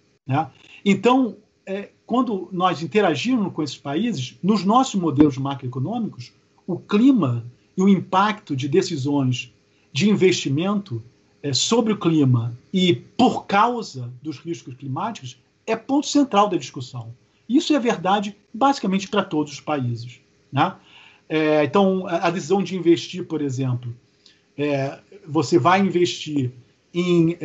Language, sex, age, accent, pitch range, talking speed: Portuguese, male, 50-69, Brazilian, 140-195 Hz, 115 wpm